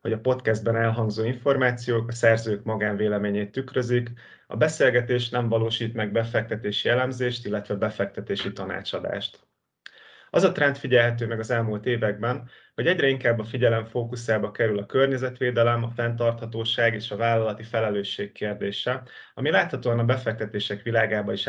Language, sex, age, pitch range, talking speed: Hungarian, male, 30-49, 110-125 Hz, 135 wpm